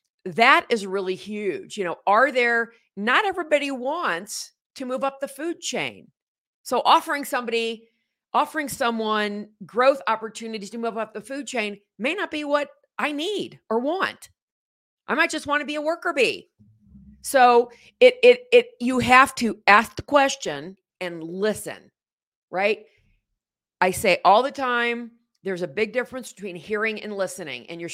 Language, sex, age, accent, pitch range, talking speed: English, female, 50-69, American, 190-265 Hz, 160 wpm